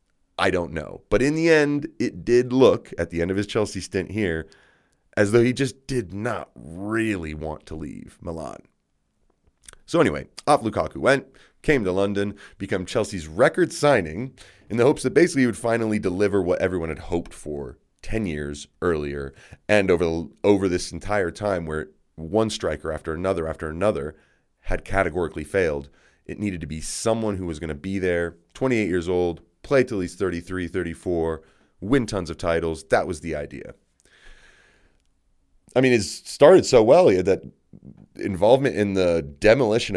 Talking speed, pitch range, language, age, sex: 175 wpm, 85-110 Hz, English, 30-49, male